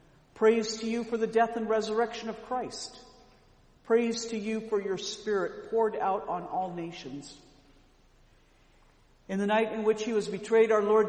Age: 50-69